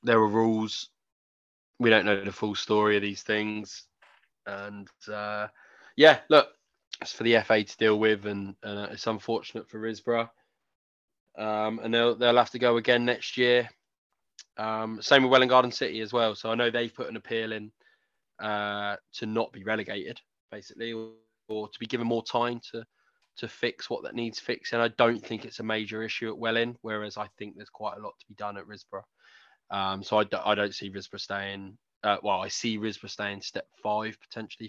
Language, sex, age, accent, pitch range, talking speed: English, male, 20-39, British, 105-120 Hz, 195 wpm